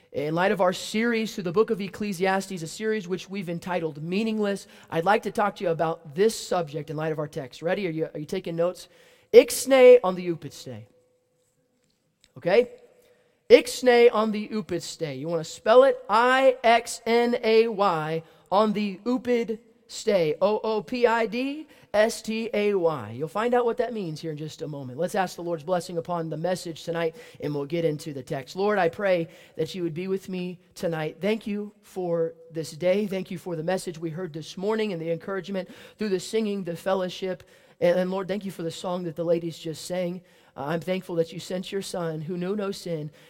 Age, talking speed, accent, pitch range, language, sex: 30-49, 205 wpm, American, 165-210 Hz, English, male